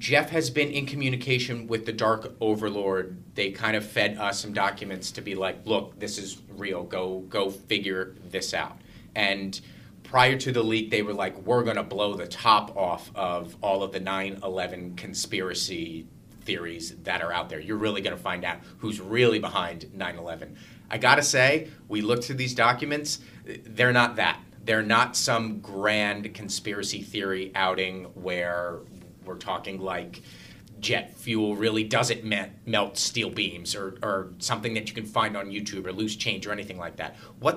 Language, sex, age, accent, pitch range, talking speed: English, male, 30-49, American, 100-120 Hz, 170 wpm